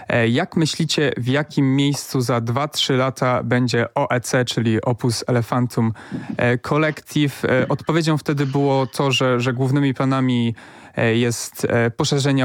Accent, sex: native, male